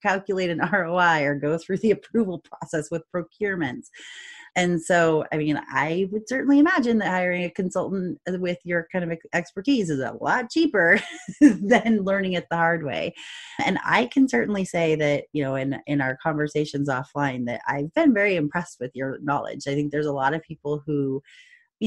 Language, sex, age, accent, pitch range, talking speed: English, female, 30-49, American, 150-205 Hz, 185 wpm